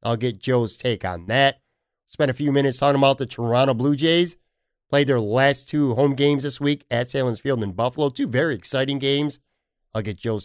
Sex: male